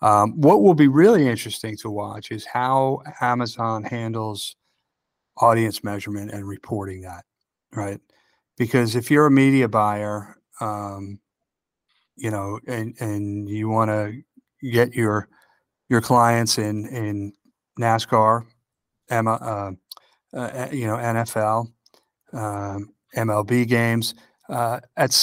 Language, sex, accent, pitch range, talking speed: English, male, American, 105-125 Hz, 120 wpm